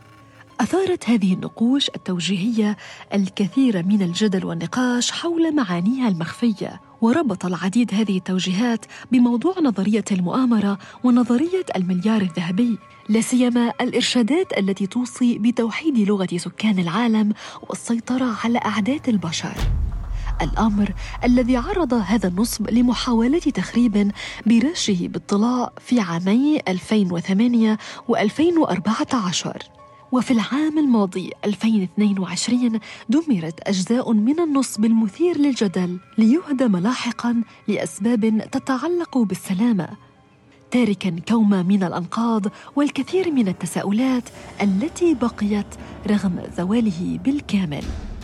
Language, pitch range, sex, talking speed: Arabic, 195-245 Hz, female, 90 wpm